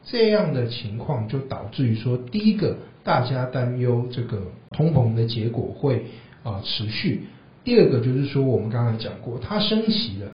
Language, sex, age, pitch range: Chinese, male, 60-79, 110-140 Hz